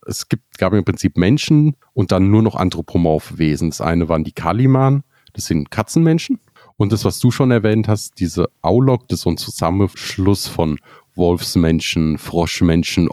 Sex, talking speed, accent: male, 170 wpm, German